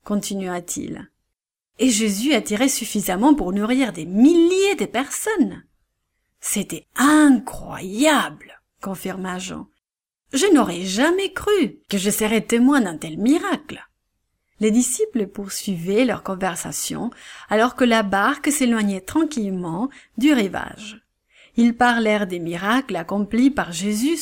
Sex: female